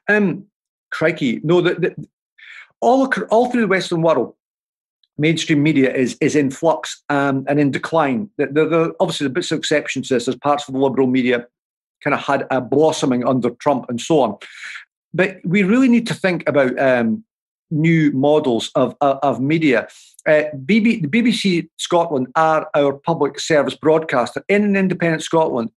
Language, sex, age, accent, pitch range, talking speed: English, male, 50-69, British, 140-185 Hz, 175 wpm